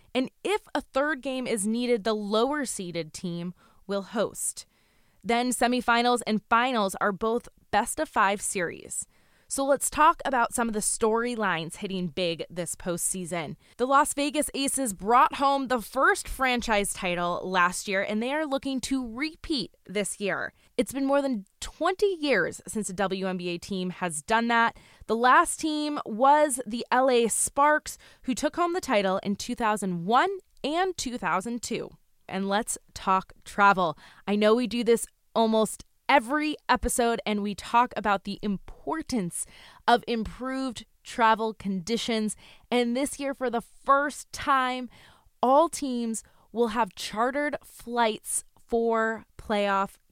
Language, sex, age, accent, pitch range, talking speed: English, female, 20-39, American, 195-260 Hz, 140 wpm